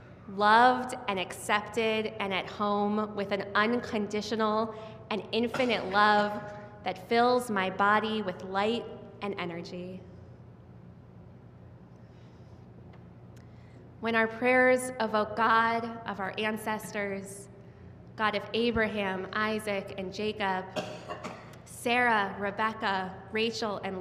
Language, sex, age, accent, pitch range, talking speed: English, female, 20-39, American, 195-225 Hz, 95 wpm